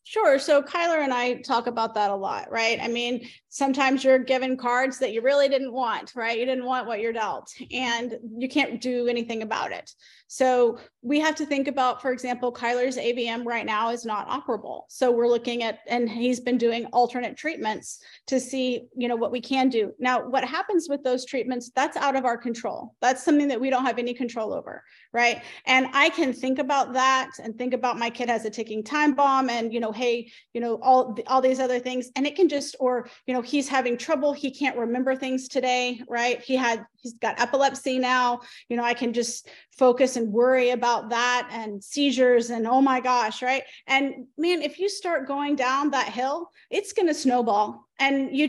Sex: female